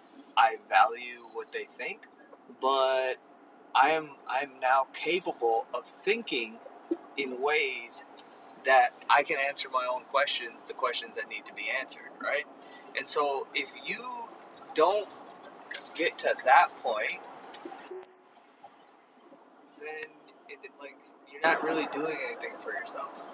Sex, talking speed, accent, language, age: male, 130 wpm, American, English, 20-39